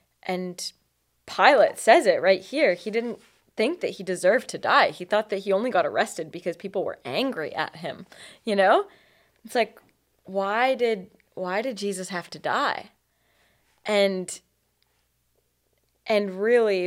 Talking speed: 150 wpm